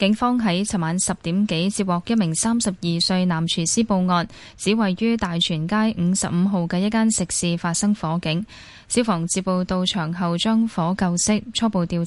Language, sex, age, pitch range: Chinese, female, 10-29, 170-210 Hz